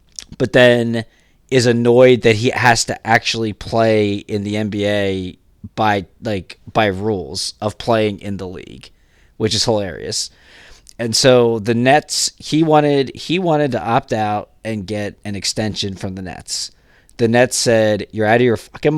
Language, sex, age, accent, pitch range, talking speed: English, male, 20-39, American, 105-120 Hz, 160 wpm